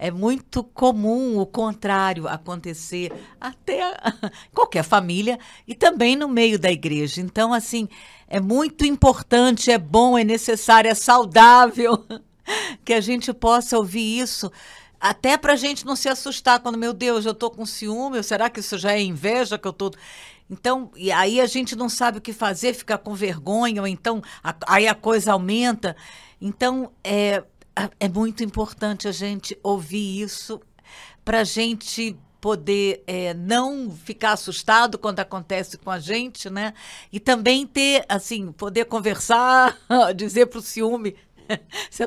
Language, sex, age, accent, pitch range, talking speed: Portuguese, female, 50-69, Brazilian, 195-245 Hz, 155 wpm